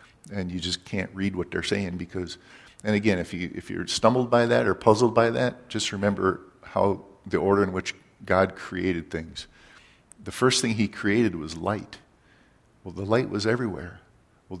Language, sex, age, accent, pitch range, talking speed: English, male, 50-69, American, 90-105 Hz, 195 wpm